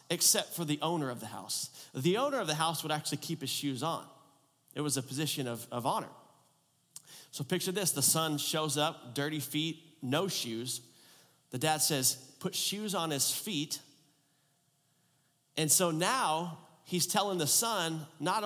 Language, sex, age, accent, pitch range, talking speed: English, male, 30-49, American, 145-190 Hz, 170 wpm